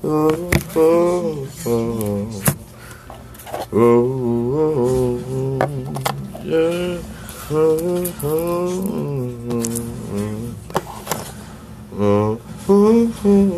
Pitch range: 120-200 Hz